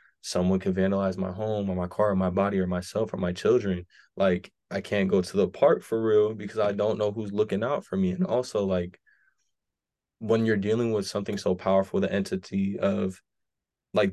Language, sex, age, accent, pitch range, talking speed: English, male, 20-39, American, 95-110 Hz, 205 wpm